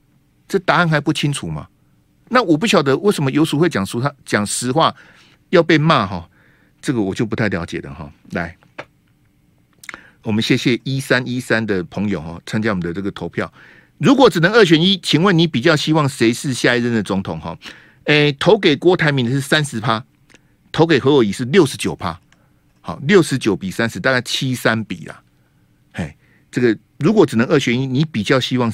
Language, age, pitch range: Chinese, 50-69, 110-165 Hz